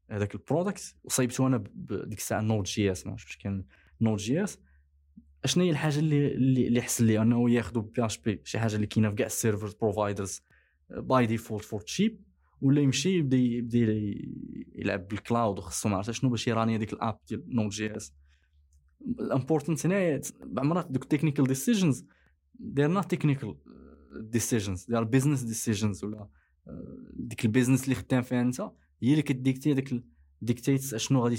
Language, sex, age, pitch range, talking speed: Arabic, male, 20-39, 105-130 Hz, 165 wpm